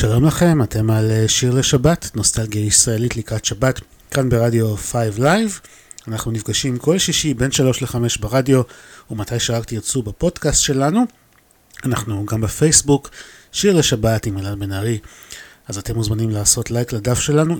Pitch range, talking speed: 105-135 Hz, 145 wpm